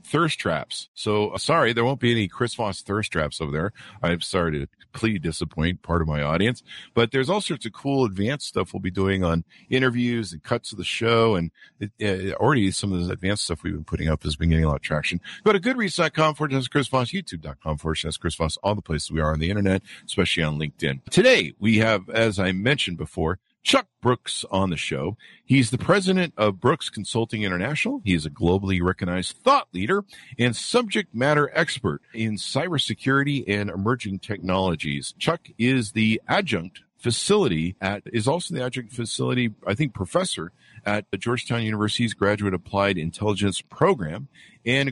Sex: male